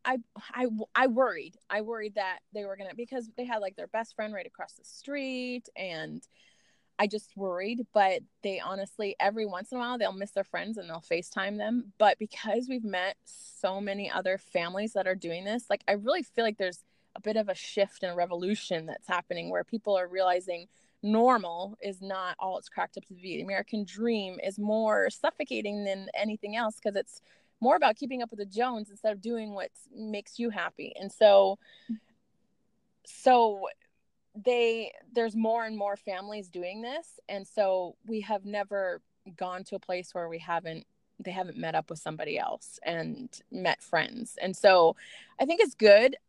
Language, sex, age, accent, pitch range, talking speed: English, female, 20-39, American, 195-235 Hz, 190 wpm